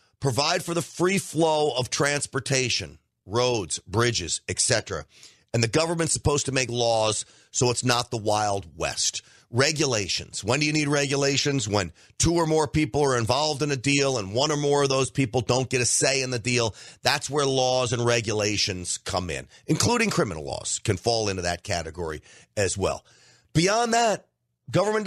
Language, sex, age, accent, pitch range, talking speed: English, male, 40-59, American, 115-160 Hz, 175 wpm